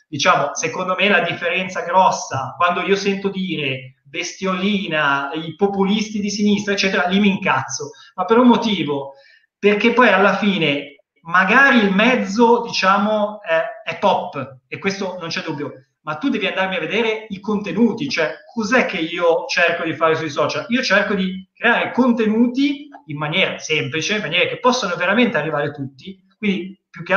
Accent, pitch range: native, 165-210 Hz